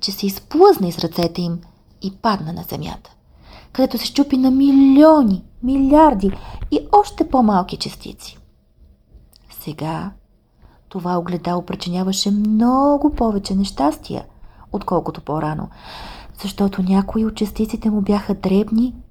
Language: English